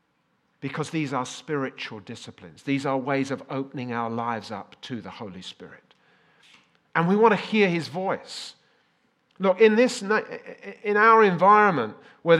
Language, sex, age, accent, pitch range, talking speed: English, male, 40-59, British, 125-180 Hz, 150 wpm